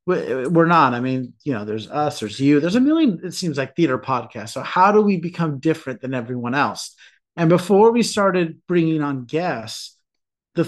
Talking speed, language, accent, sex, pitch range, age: 195 wpm, English, American, male, 130-170 Hz, 30-49